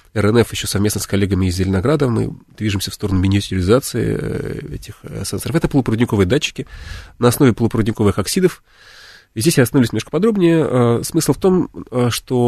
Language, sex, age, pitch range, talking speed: Russian, male, 30-49, 105-130 Hz, 145 wpm